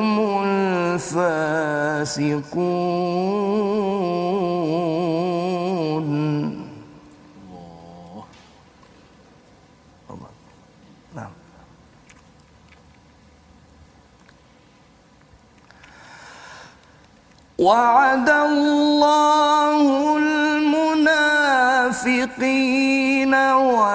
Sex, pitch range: male, 195-270 Hz